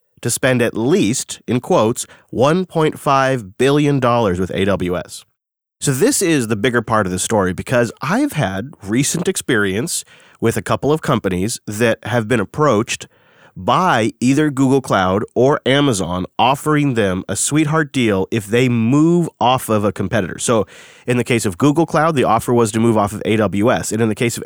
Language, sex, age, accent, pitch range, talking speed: English, male, 30-49, American, 105-140 Hz, 175 wpm